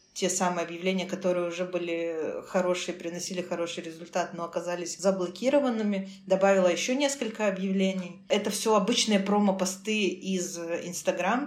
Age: 20-39